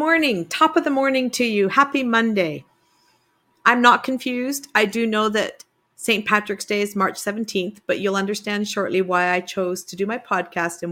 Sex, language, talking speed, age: female, English, 185 wpm, 50-69